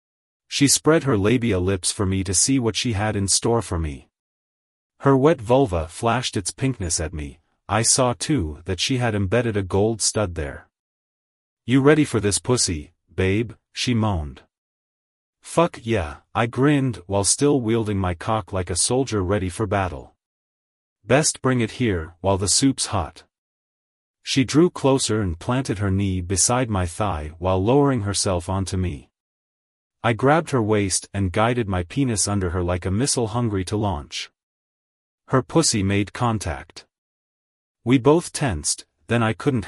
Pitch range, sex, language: 90-125 Hz, male, English